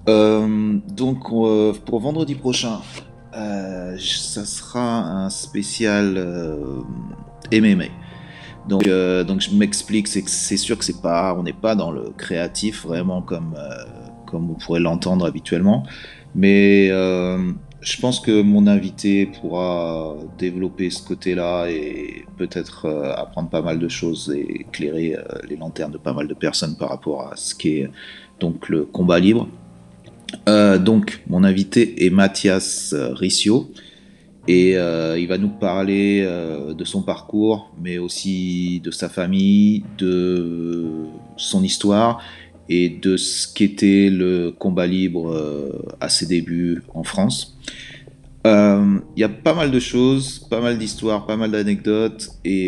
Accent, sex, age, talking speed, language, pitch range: French, male, 30-49, 150 wpm, French, 85-105 Hz